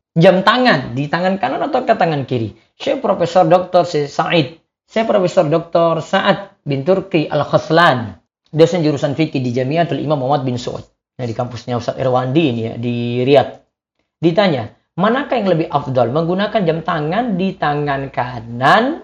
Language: Indonesian